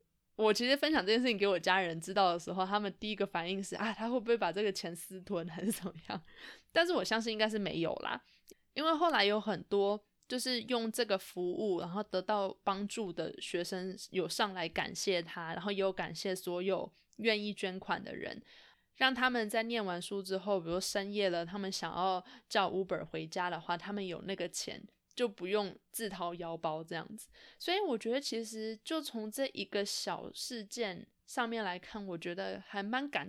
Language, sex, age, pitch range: Chinese, female, 20-39, 180-225 Hz